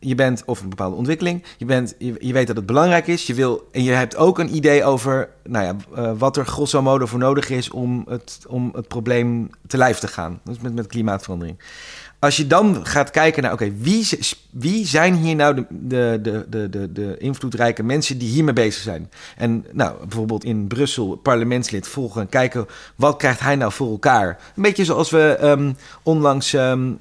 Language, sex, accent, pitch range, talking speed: Dutch, male, Dutch, 115-145 Hz, 205 wpm